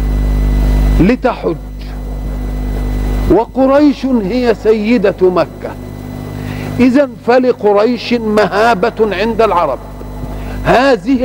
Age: 50-69